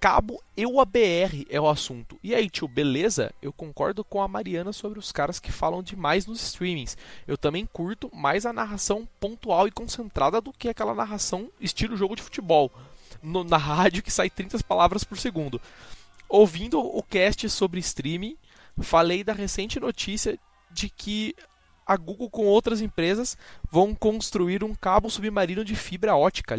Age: 20-39